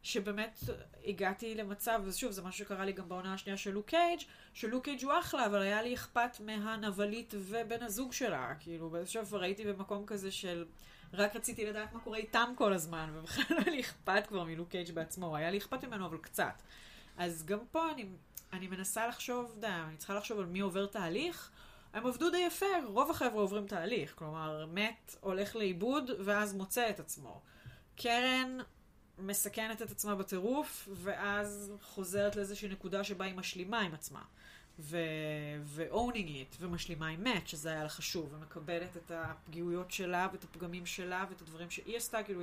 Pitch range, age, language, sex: 180-230 Hz, 30-49, Hebrew, female